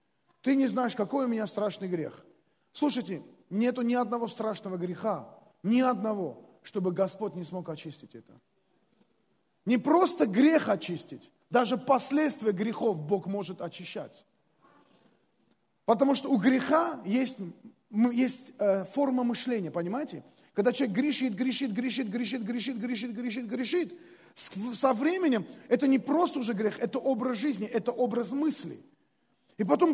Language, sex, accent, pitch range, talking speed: Russian, male, native, 220-300 Hz, 130 wpm